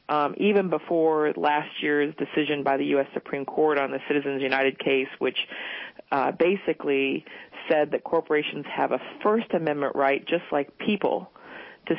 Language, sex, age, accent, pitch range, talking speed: English, female, 40-59, American, 145-175 Hz, 155 wpm